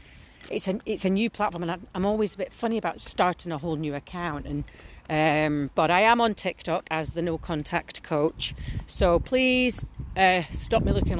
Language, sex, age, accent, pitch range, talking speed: English, female, 40-59, British, 170-220 Hz, 190 wpm